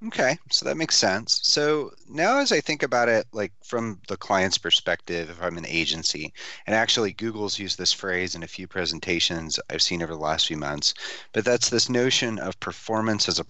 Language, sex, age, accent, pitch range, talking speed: English, male, 30-49, American, 85-105 Hz, 205 wpm